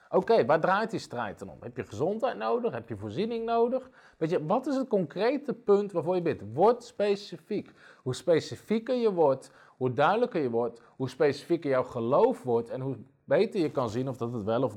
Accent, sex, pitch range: Dutch, male, 120-175 Hz